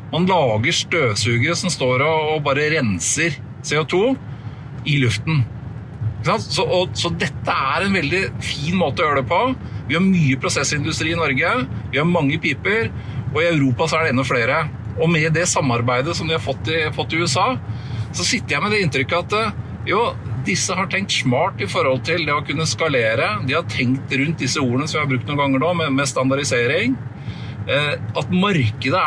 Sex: male